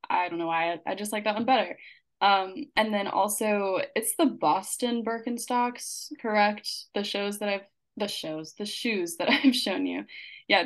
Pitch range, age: 185-225 Hz, 10-29